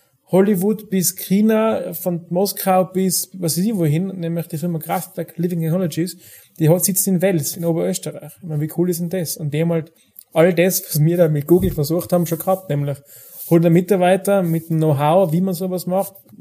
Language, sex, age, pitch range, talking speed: German, male, 30-49, 150-180 Hz, 205 wpm